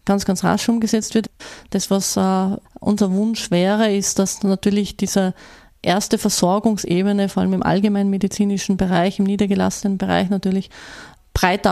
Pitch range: 190-210 Hz